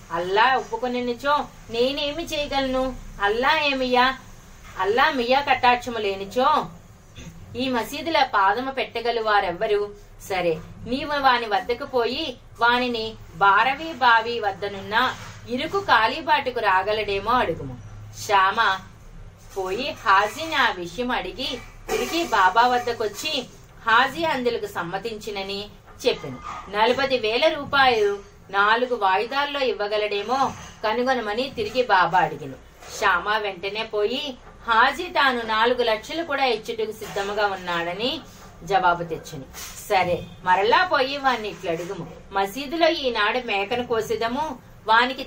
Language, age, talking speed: Telugu, 30-49, 80 wpm